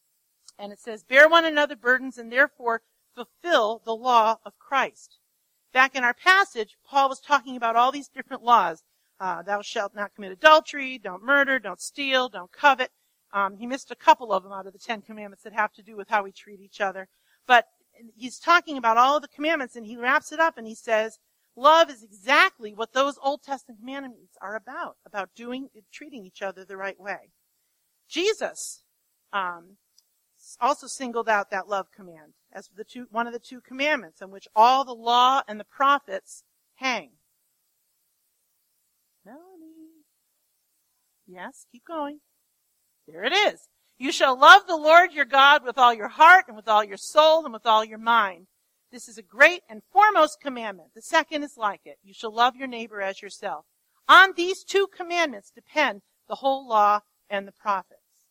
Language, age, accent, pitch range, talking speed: English, 50-69, American, 210-290 Hz, 180 wpm